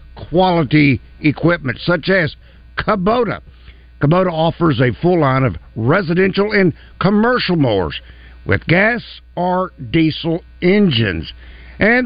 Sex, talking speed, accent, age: male, 105 wpm, American, 60-79